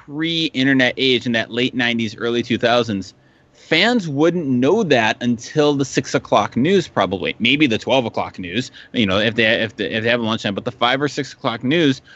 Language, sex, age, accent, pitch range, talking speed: English, male, 20-39, American, 105-135 Hz, 200 wpm